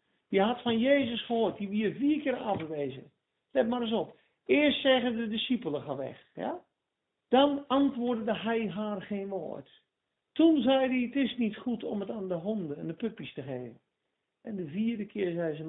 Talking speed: 190 wpm